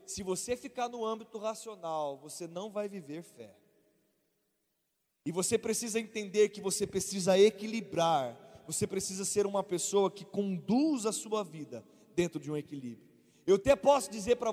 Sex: male